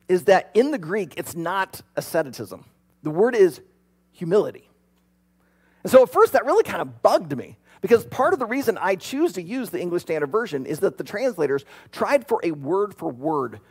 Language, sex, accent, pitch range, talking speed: English, male, American, 145-230 Hz, 190 wpm